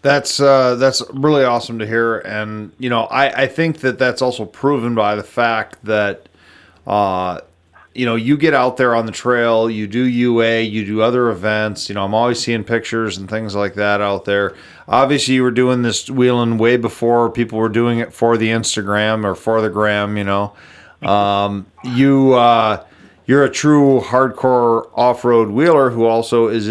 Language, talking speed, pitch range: English, 185 wpm, 110-125 Hz